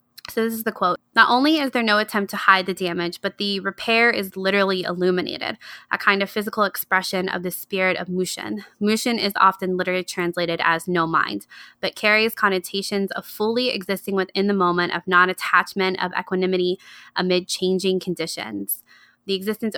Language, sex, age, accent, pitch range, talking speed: English, female, 20-39, American, 175-205 Hz, 175 wpm